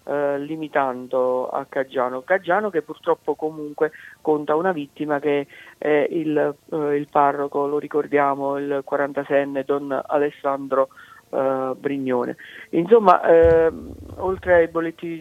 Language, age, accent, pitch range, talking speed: Italian, 50-69, native, 140-165 Hz, 105 wpm